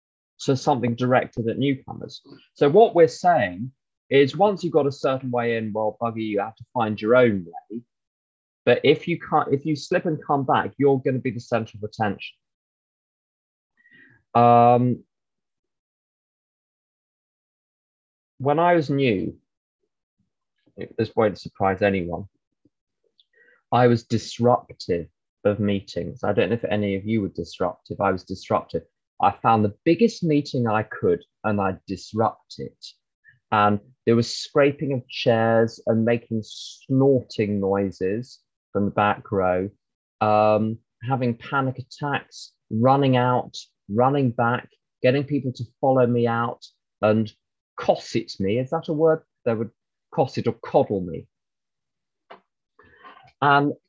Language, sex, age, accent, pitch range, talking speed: English, male, 20-39, British, 105-135 Hz, 135 wpm